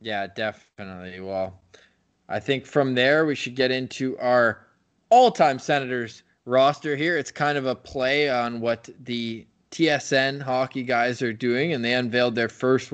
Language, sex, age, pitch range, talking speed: English, male, 20-39, 115-145 Hz, 160 wpm